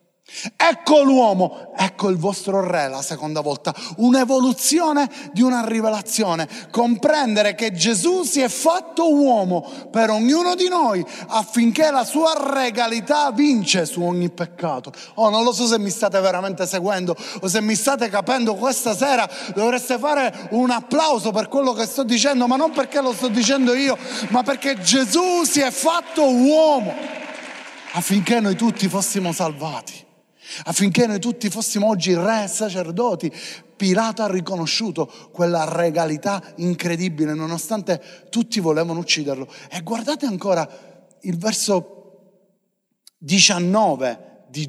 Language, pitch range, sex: Italian, 180-255 Hz, male